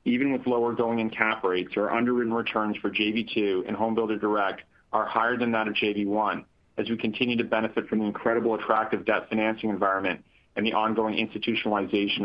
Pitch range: 105-120 Hz